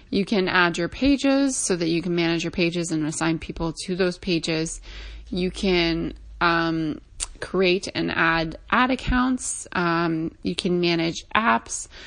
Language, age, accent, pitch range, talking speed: English, 20-39, American, 165-190 Hz, 155 wpm